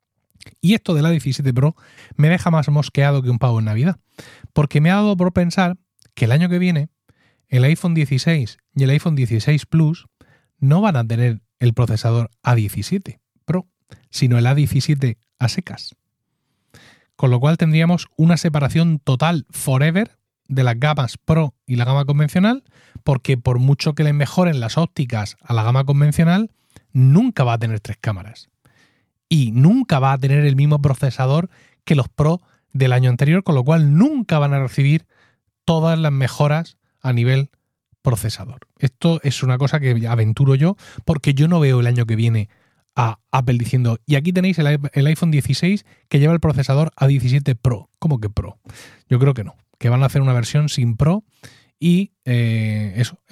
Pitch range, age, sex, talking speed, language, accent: 125-155 Hz, 30-49, male, 175 wpm, Spanish, Spanish